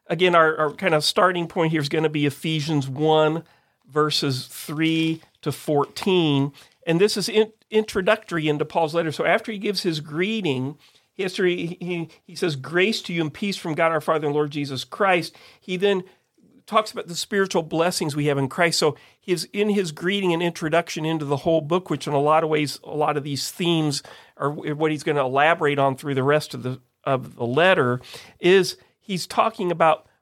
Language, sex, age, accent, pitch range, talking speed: English, male, 40-59, American, 145-185 Hz, 205 wpm